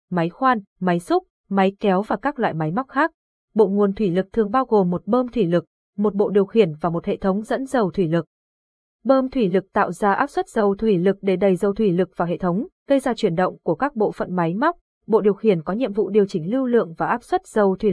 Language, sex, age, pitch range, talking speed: Vietnamese, female, 20-39, 180-240 Hz, 260 wpm